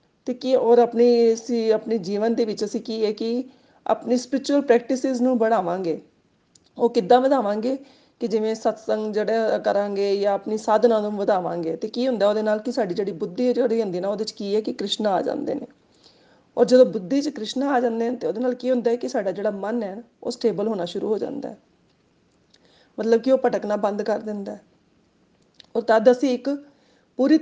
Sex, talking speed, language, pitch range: female, 190 wpm, Punjabi, 205-250 Hz